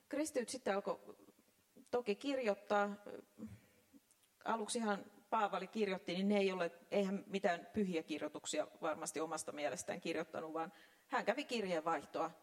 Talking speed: 120 wpm